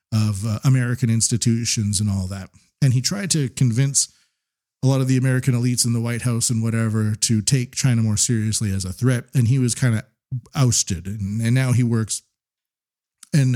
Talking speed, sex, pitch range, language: 195 wpm, male, 110-130 Hz, English